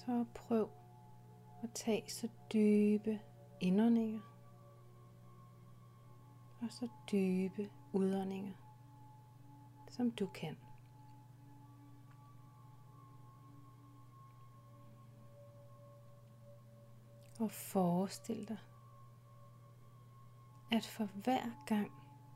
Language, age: Danish, 30-49